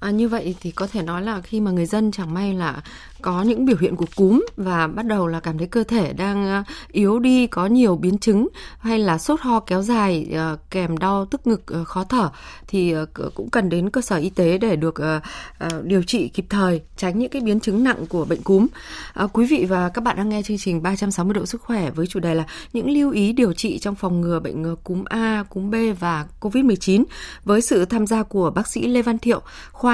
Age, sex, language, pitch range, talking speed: 20-39, female, Vietnamese, 185-240 Hz, 230 wpm